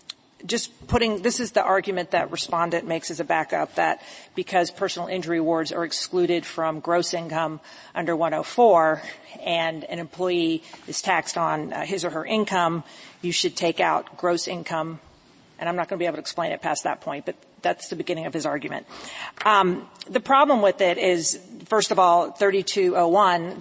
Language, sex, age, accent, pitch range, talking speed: English, female, 40-59, American, 165-190 Hz, 180 wpm